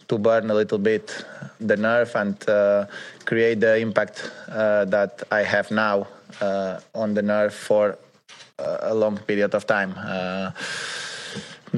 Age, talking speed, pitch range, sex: 20-39, 145 wpm, 100-115 Hz, male